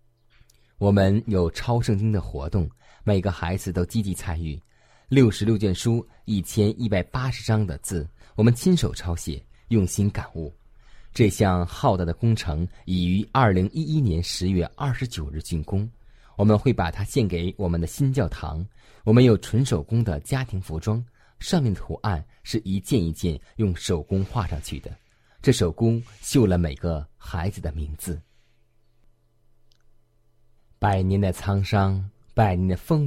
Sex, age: male, 20-39